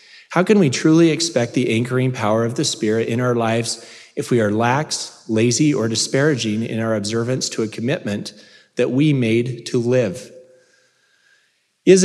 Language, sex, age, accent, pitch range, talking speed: English, male, 30-49, American, 120-160 Hz, 165 wpm